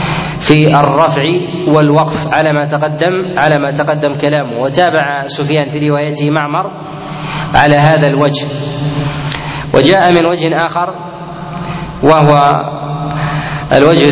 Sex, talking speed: male, 100 wpm